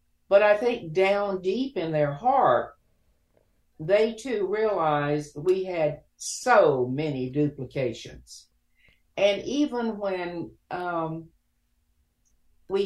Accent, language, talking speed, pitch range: American, English, 100 wpm, 145-200 Hz